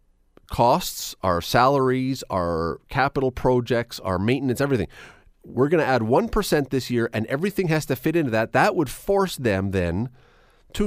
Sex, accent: male, American